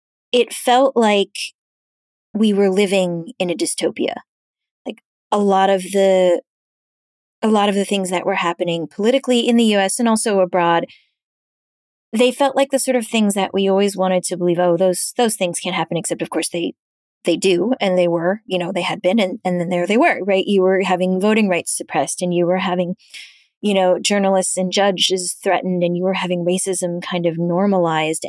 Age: 20-39